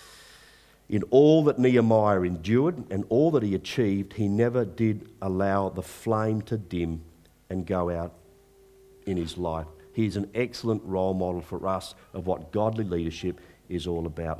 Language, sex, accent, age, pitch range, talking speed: English, male, Australian, 50-69, 90-115 Hz, 160 wpm